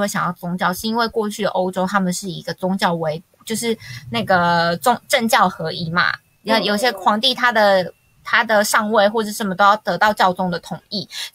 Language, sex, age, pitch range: Chinese, female, 20-39, 190-245 Hz